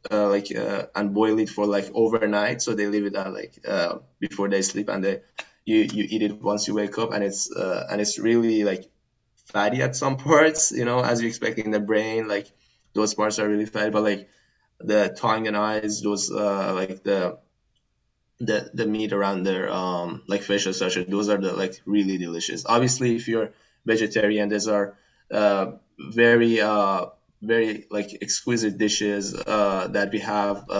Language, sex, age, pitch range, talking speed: English, male, 20-39, 100-110 Hz, 185 wpm